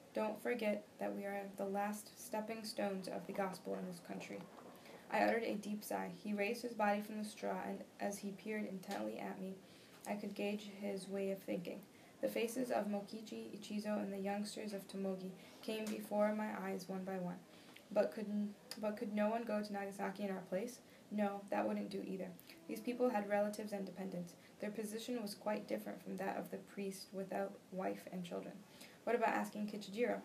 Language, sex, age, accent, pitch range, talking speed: English, female, 10-29, American, 190-215 Hz, 195 wpm